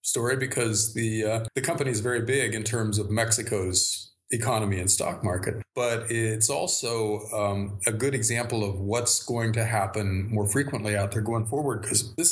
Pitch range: 105-120 Hz